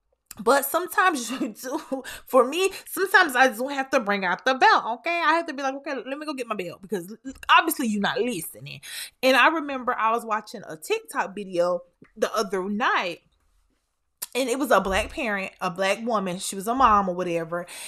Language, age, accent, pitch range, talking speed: English, 20-39, American, 185-275 Hz, 205 wpm